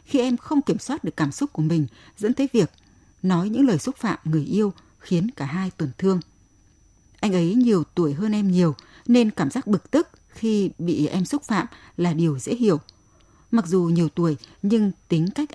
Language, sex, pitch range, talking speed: Vietnamese, female, 160-220 Hz, 205 wpm